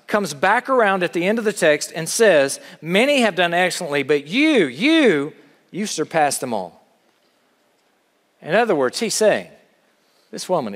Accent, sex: American, male